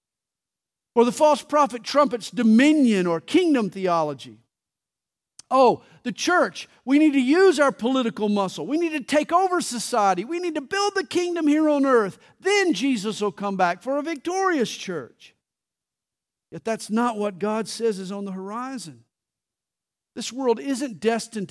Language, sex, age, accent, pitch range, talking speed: English, male, 50-69, American, 180-265 Hz, 160 wpm